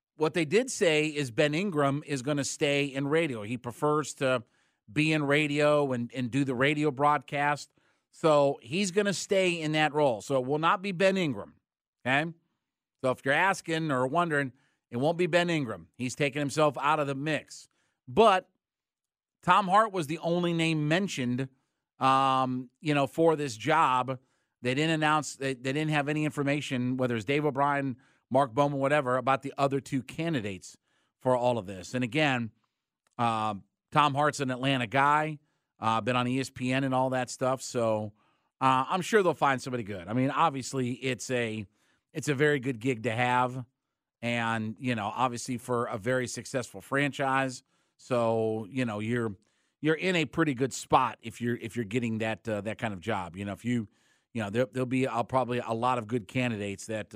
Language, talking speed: English, 190 wpm